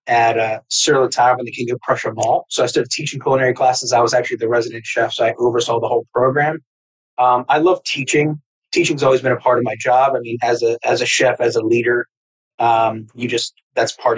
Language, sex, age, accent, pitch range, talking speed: English, male, 30-49, American, 120-135 Hz, 230 wpm